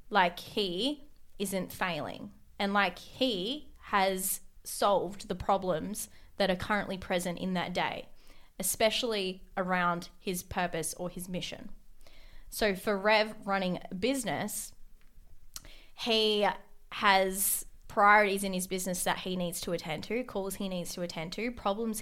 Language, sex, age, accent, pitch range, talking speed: English, female, 20-39, Australian, 190-225 Hz, 135 wpm